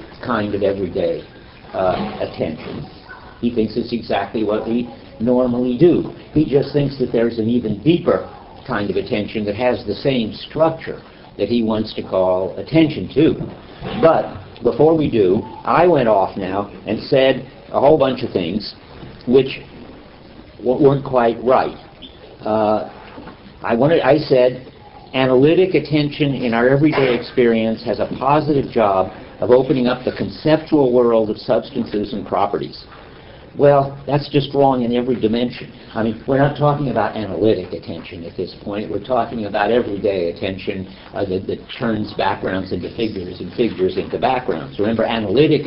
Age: 60-79